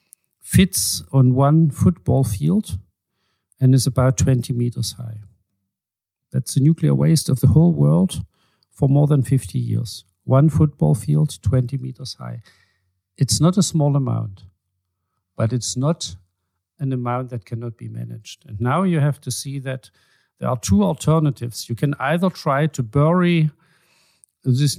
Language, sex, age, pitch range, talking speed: Hungarian, male, 50-69, 120-155 Hz, 150 wpm